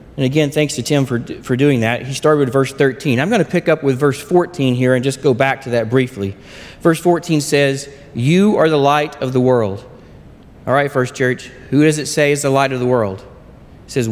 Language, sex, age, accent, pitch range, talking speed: English, male, 40-59, American, 125-150 Hz, 240 wpm